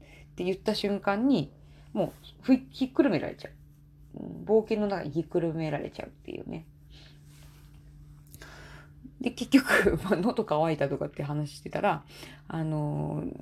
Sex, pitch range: female, 145-210 Hz